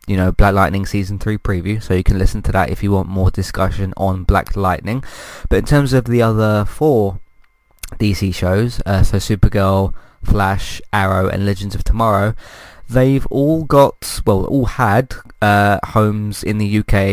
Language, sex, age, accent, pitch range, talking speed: English, male, 20-39, British, 95-115 Hz, 175 wpm